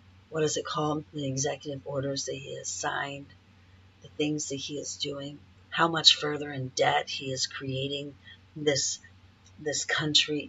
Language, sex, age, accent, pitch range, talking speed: English, female, 50-69, American, 95-150 Hz, 165 wpm